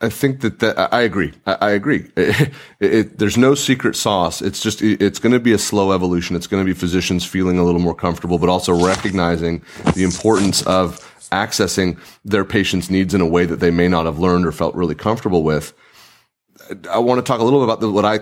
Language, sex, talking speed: English, male, 225 wpm